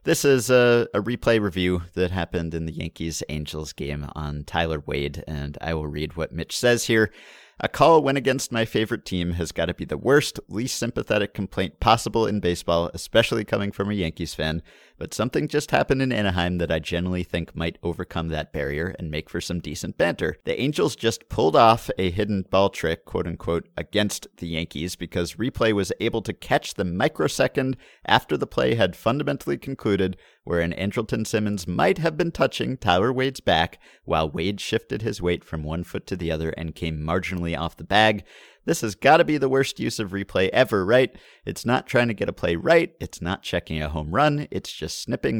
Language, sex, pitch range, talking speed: English, male, 80-110 Hz, 200 wpm